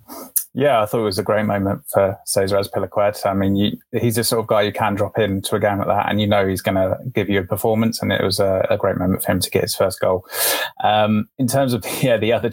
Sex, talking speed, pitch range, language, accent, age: male, 280 wpm, 100-115 Hz, English, British, 20-39